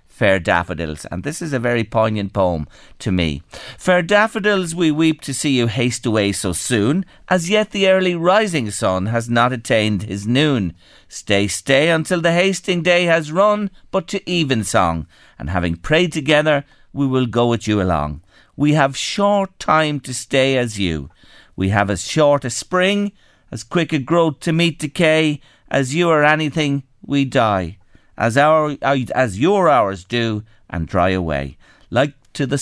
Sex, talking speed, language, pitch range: male, 170 wpm, English, 105-160 Hz